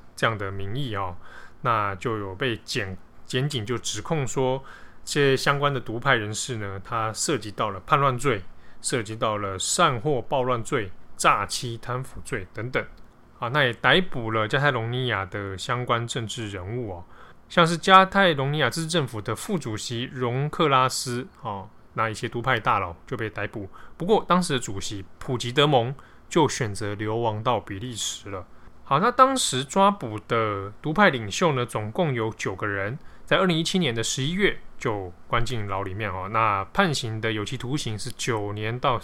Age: 20-39